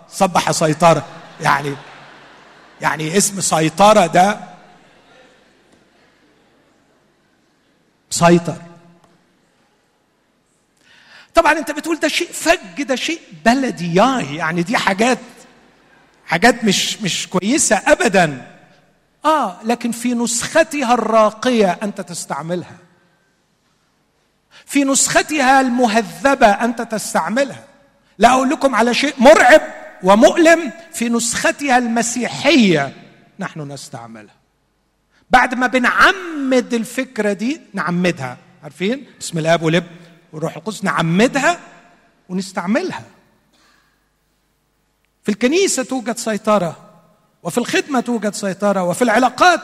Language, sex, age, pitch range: Arabic, male, 50-69, 180-275 Hz